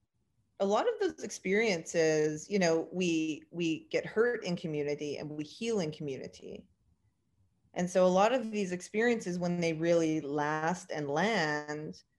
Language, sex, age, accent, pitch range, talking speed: English, female, 30-49, American, 150-195 Hz, 155 wpm